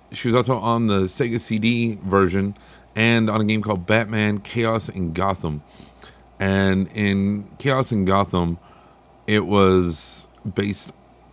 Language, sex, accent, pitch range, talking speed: English, male, American, 85-110 Hz, 130 wpm